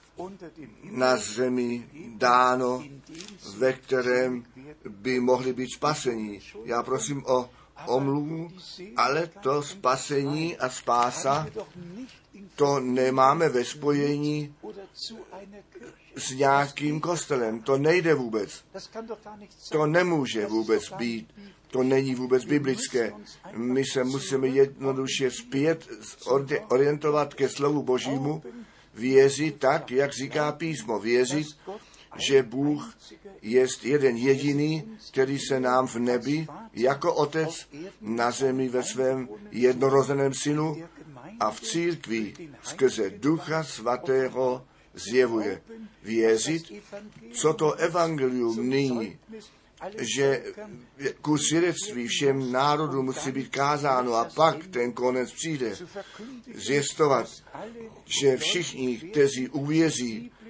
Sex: male